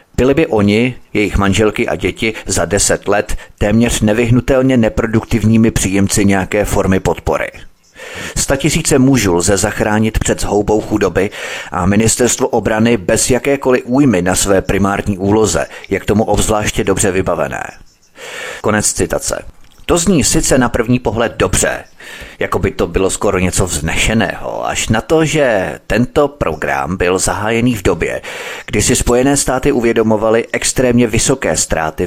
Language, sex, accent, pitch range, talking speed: Czech, male, native, 100-125 Hz, 140 wpm